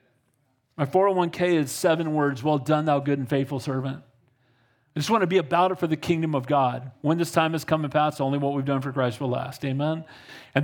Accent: American